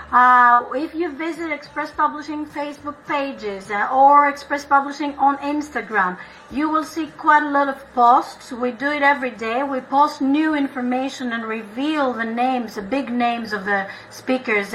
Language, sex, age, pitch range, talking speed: English, female, 40-59, 245-300 Hz, 165 wpm